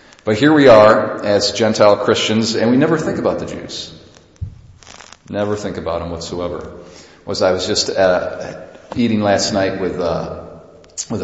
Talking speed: 170 wpm